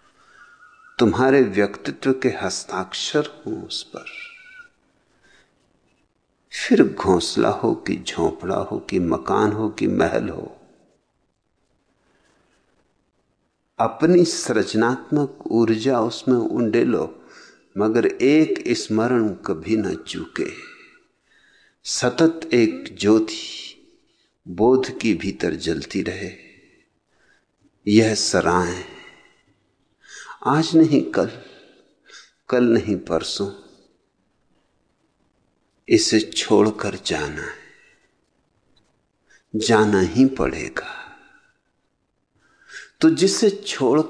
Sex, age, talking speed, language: male, 60-79, 80 wpm, English